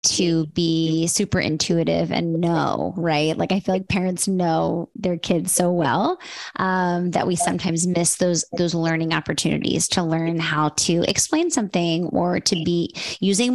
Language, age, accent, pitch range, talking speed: English, 20-39, American, 175-225 Hz, 160 wpm